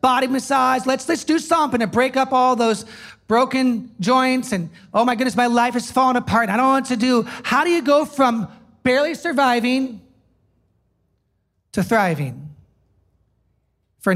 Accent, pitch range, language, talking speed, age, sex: American, 175-250 Hz, English, 155 wpm, 40-59, male